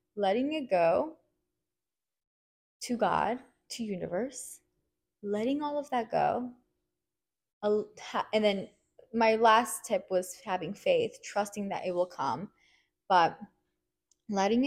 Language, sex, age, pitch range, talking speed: English, female, 20-39, 185-225 Hz, 110 wpm